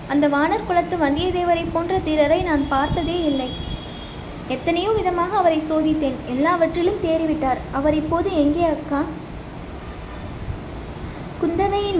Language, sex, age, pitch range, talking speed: Tamil, female, 20-39, 295-360 Hz, 100 wpm